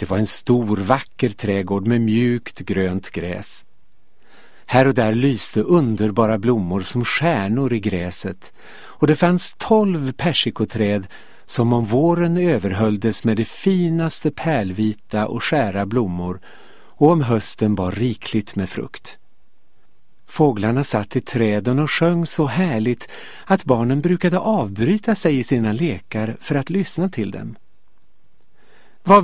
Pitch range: 110-160 Hz